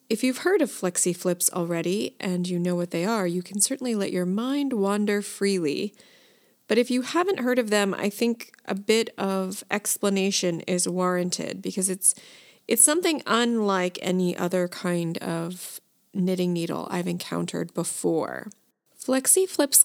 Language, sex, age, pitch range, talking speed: English, female, 30-49, 185-230 Hz, 150 wpm